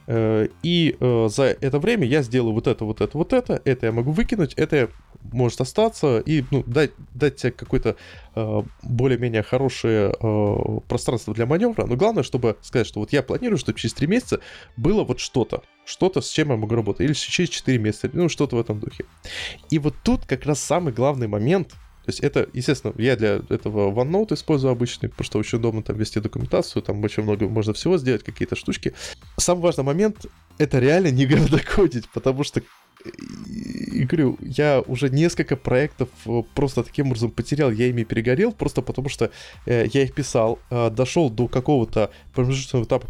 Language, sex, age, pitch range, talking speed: Russian, male, 20-39, 115-150 Hz, 180 wpm